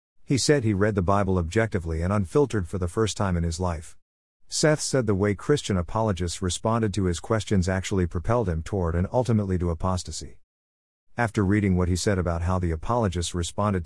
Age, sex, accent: 50-69, male, American